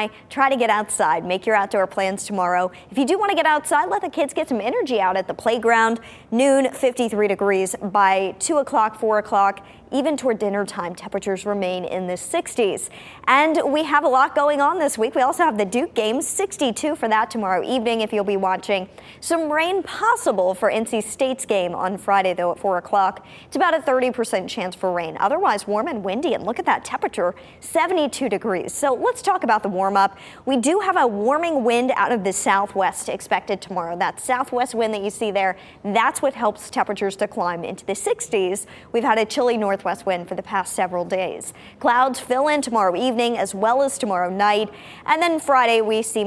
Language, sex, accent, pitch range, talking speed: English, male, American, 195-265 Hz, 205 wpm